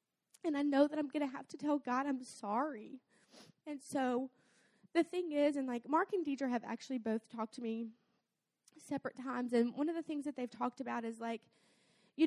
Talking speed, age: 210 wpm, 20-39